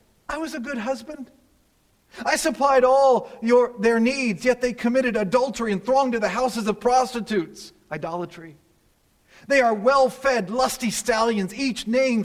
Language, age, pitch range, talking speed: English, 40-59, 170-255 Hz, 145 wpm